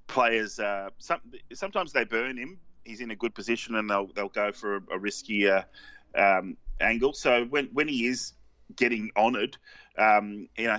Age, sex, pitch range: 30-49, male, 100-120 Hz